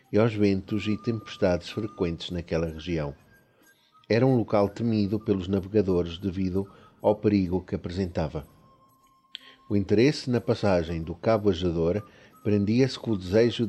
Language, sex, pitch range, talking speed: Portuguese, male, 95-120 Hz, 130 wpm